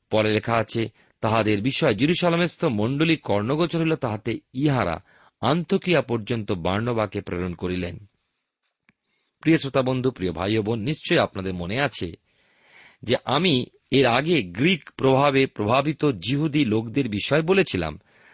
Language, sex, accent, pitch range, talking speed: Bengali, male, native, 110-155 Hz, 115 wpm